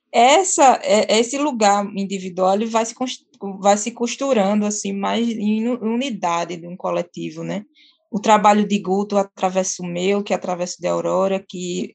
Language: Portuguese